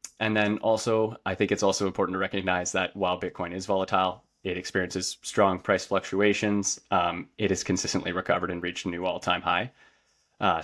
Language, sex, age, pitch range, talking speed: English, male, 20-39, 90-100 Hz, 185 wpm